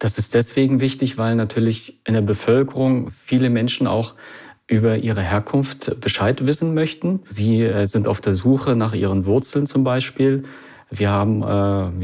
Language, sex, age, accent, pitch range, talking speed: German, male, 40-59, German, 100-120 Hz, 155 wpm